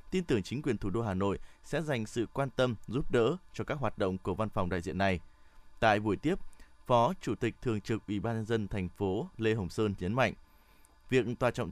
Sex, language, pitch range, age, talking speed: male, Vietnamese, 95-125 Hz, 20-39, 240 wpm